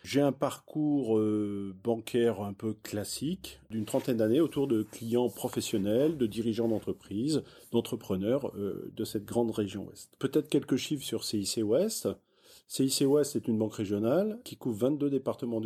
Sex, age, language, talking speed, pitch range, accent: male, 40-59, French, 150 wpm, 115-150 Hz, French